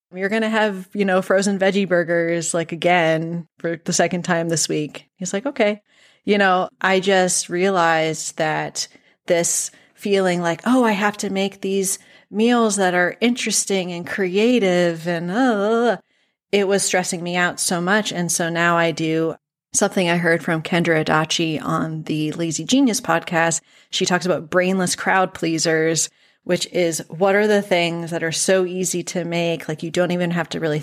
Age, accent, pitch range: 30-49, American, 165-195 Hz